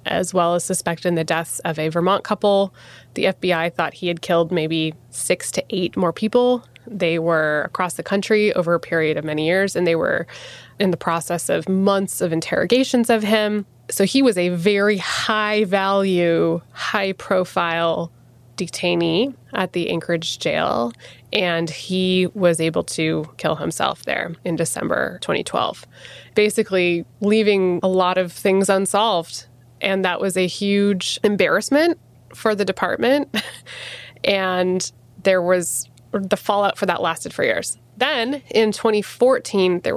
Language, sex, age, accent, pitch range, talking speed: English, female, 20-39, American, 165-205 Hz, 145 wpm